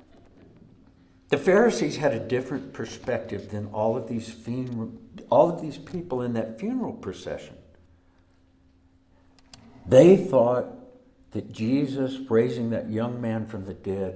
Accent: American